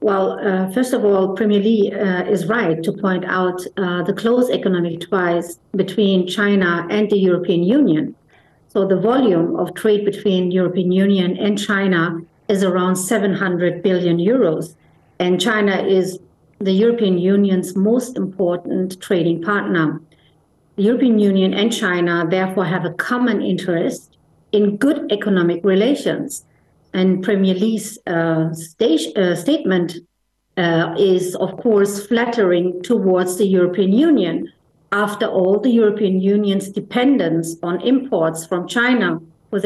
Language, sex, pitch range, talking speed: English, female, 180-220 Hz, 135 wpm